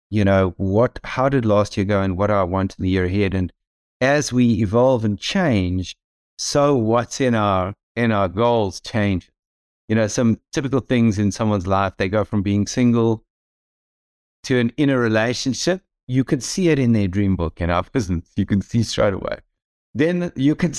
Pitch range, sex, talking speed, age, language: 100-130 Hz, male, 195 wpm, 60-79, English